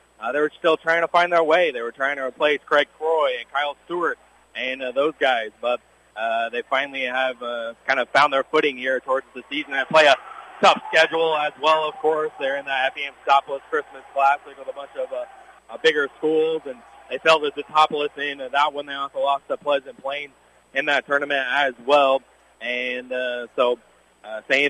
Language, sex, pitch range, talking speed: English, male, 130-155 Hz, 210 wpm